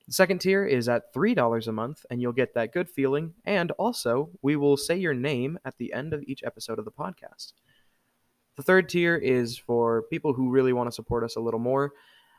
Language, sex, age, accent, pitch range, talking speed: English, male, 20-39, American, 115-145 Hz, 220 wpm